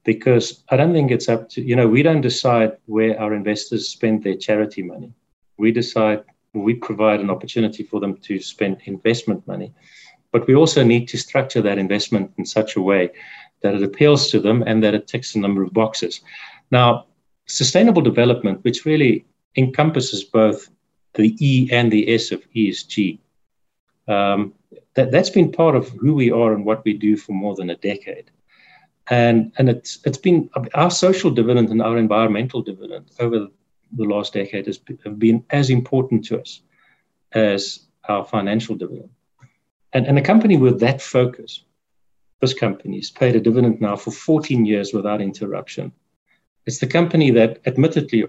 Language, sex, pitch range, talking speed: English, male, 105-130 Hz, 170 wpm